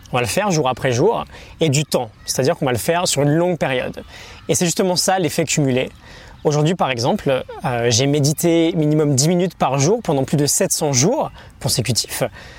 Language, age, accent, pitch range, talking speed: French, 20-39, French, 140-180 Hz, 200 wpm